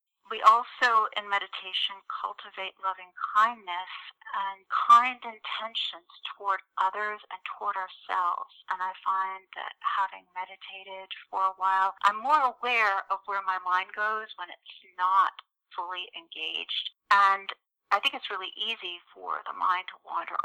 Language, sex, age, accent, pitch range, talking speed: English, female, 40-59, American, 185-225 Hz, 140 wpm